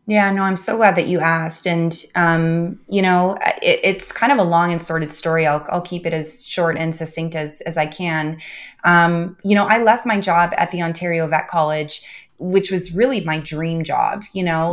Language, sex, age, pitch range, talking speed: English, female, 20-39, 165-200 Hz, 215 wpm